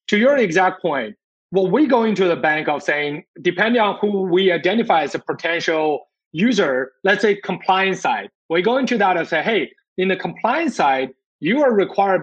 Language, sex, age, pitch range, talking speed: English, male, 30-49, 165-205 Hz, 190 wpm